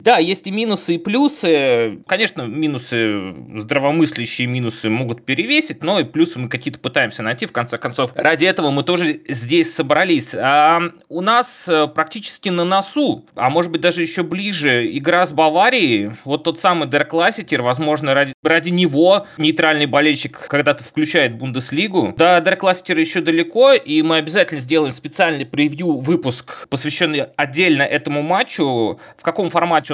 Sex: male